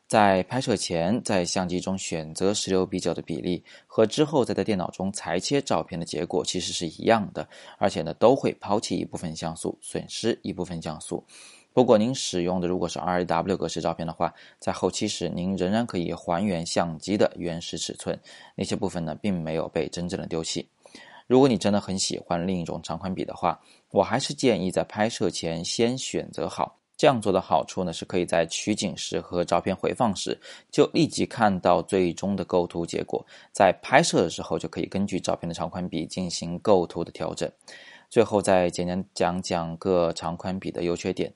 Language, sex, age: Chinese, male, 20-39